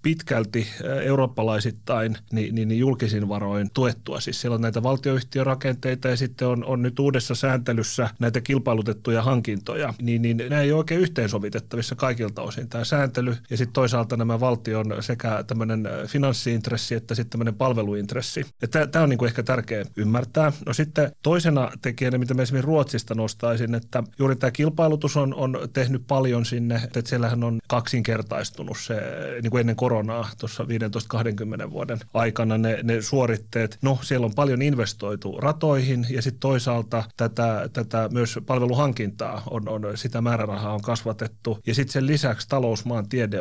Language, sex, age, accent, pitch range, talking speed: Finnish, male, 30-49, native, 115-130 Hz, 155 wpm